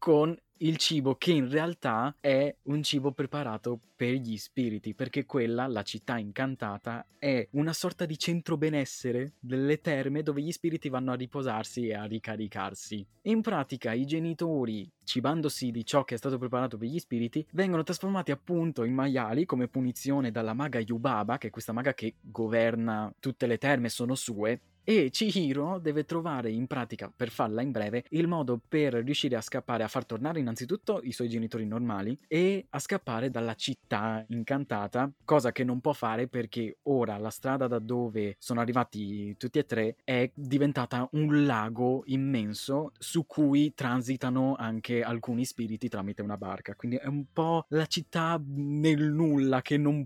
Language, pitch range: Italian, 115-145 Hz